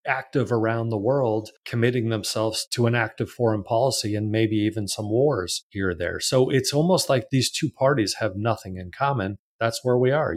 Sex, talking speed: male, 195 wpm